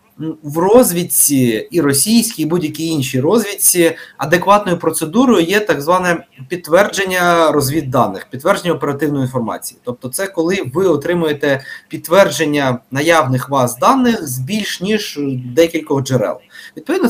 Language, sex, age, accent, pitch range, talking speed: Ukrainian, male, 20-39, native, 145-190 Hz, 115 wpm